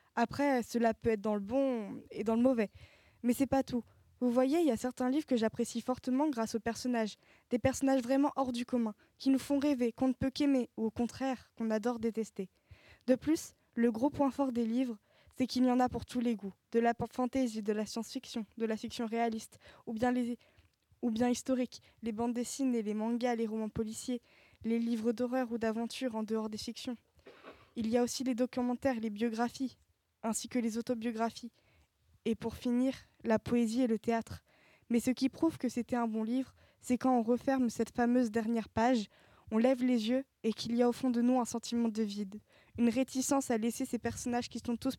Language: French